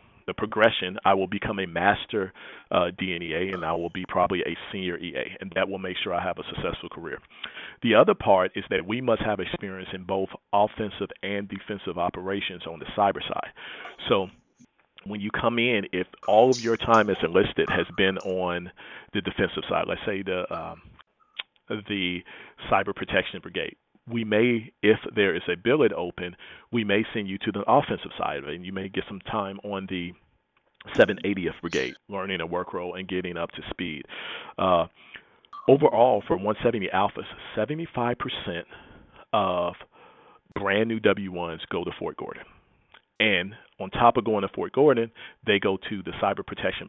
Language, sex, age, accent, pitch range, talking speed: English, male, 40-59, American, 95-110 Hz, 170 wpm